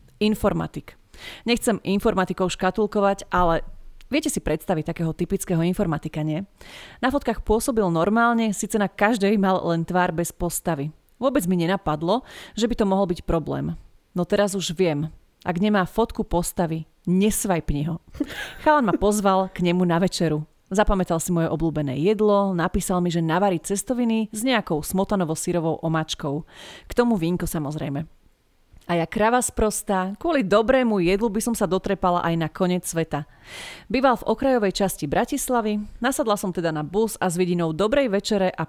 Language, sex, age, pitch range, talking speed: Slovak, female, 30-49, 170-215 Hz, 155 wpm